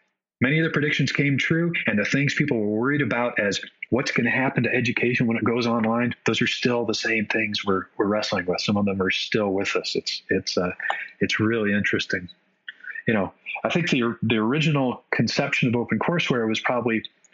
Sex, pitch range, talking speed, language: male, 100-120 Hz, 210 wpm, English